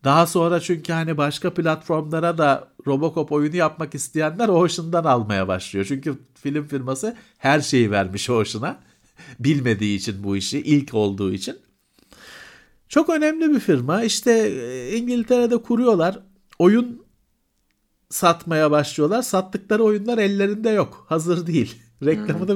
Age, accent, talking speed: 50-69, native, 120 wpm